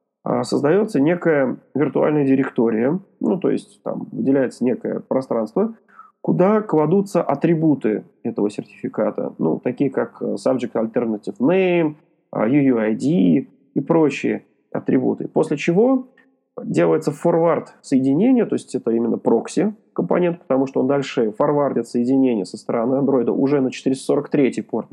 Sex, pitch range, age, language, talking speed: male, 130-185 Hz, 30-49, Russian, 120 wpm